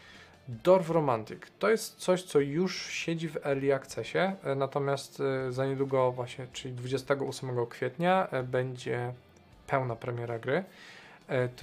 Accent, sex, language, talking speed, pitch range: native, male, Polish, 120 wpm, 125-150 Hz